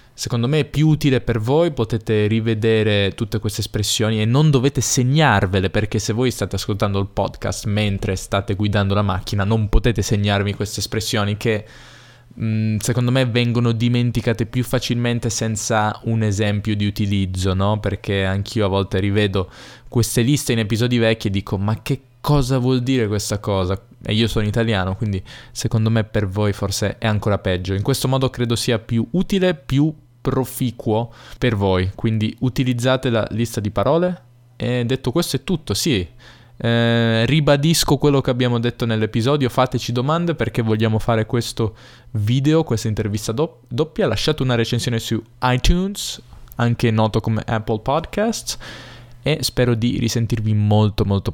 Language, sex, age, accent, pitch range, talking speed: Italian, male, 20-39, native, 105-125 Hz, 160 wpm